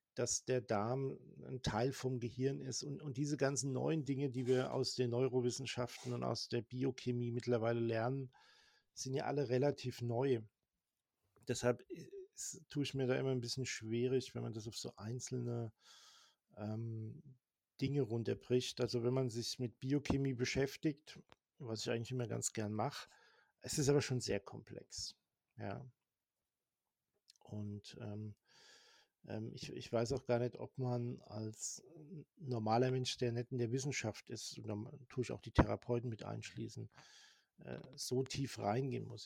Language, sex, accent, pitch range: German, male, German, 115-135 Hz